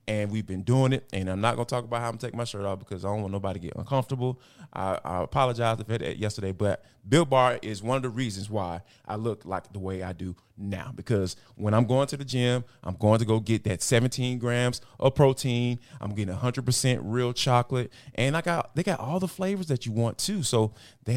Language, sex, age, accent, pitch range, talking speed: English, male, 20-39, American, 110-140 Hz, 245 wpm